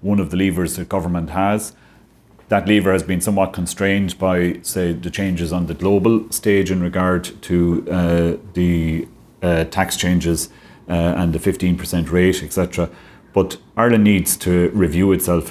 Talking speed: 165 wpm